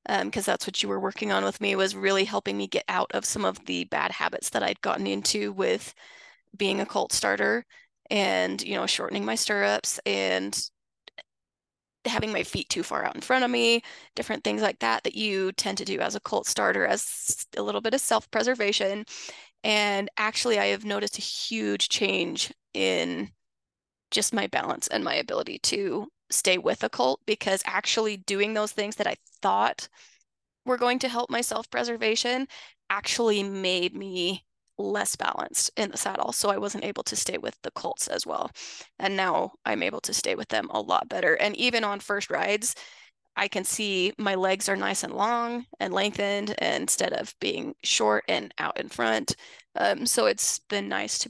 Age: 20-39